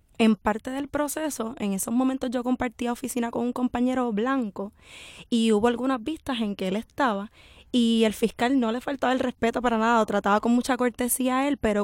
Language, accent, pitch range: Spanish, American, 195-240 Hz